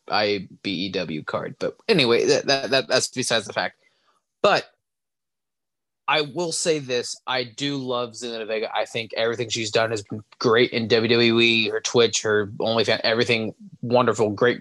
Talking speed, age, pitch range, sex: 150 wpm, 20-39, 115-140 Hz, male